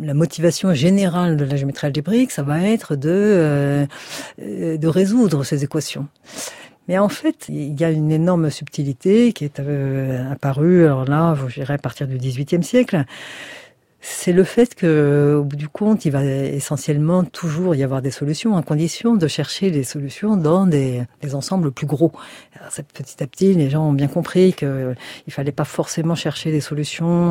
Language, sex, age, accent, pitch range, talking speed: French, female, 50-69, French, 140-180 Hz, 180 wpm